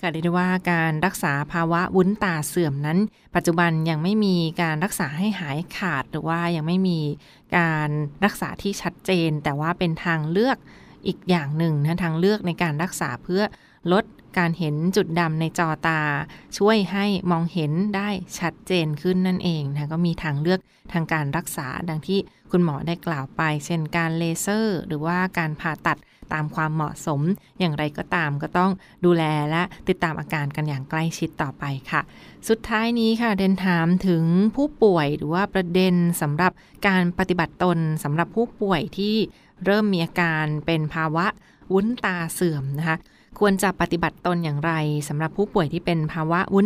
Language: Thai